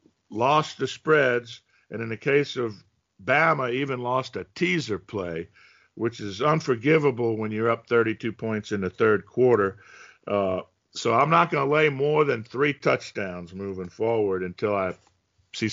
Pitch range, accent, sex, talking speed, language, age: 115-145 Hz, American, male, 160 wpm, English, 50-69